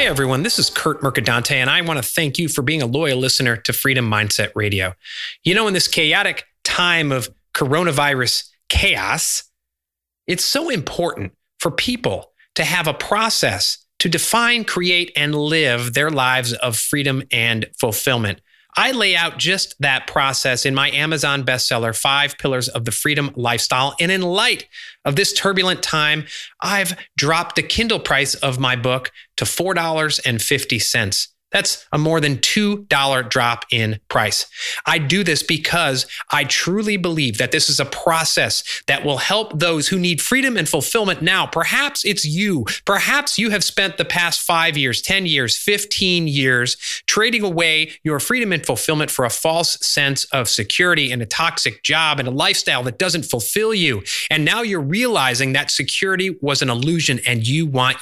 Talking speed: 170 wpm